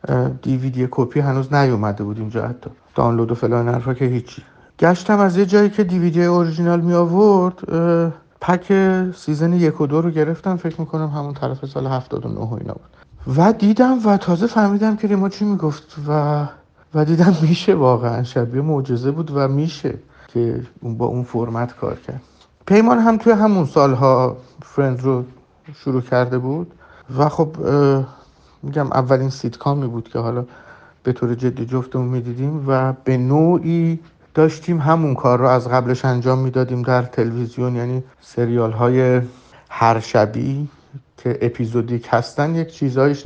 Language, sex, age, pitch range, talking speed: Persian, male, 60-79, 125-170 Hz, 145 wpm